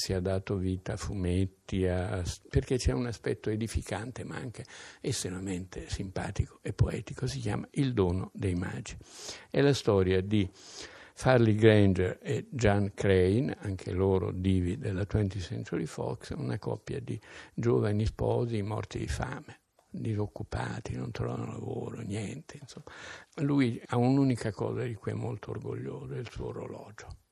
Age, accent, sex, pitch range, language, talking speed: 60-79, native, male, 95-120 Hz, Italian, 145 wpm